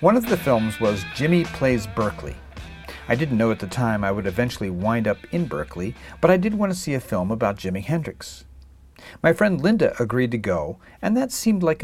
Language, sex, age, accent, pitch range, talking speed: English, male, 50-69, American, 105-155 Hz, 215 wpm